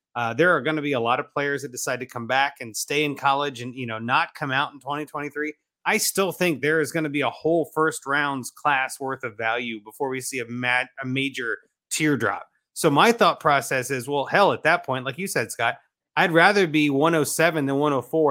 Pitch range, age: 135-165 Hz, 30-49